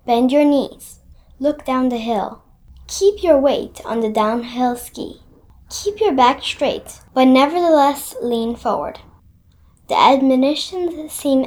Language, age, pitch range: English, 10-29, 240-320 Hz